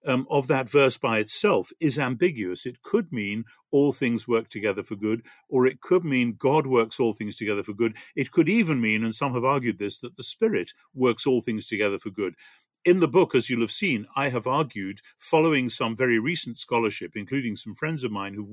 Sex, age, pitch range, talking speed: male, 50-69, 115-155 Hz, 215 wpm